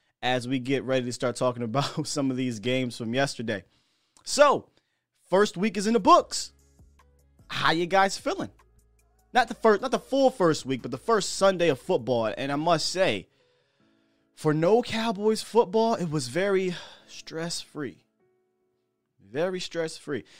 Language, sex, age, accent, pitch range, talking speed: English, male, 20-39, American, 110-155 Hz, 155 wpm